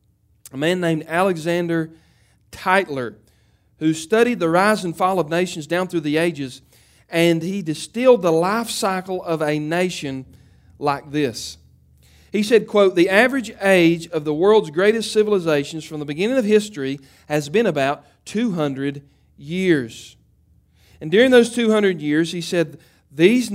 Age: 40-59